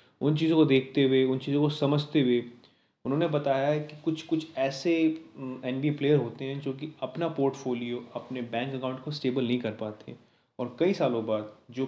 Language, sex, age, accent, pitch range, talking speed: Hindi, male, 30-49, native, 120-150 Hz, 190 wpm